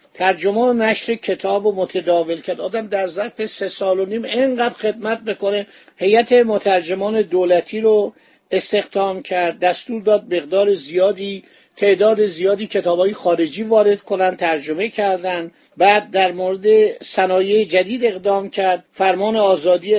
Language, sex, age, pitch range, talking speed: Persian, male, 50-69, 180-210 Hz, 130 wpm